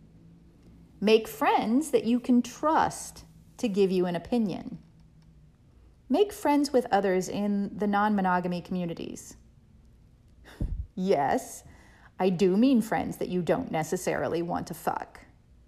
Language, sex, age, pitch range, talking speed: English, female, 40-59, 185-270 Hz, 125 wpm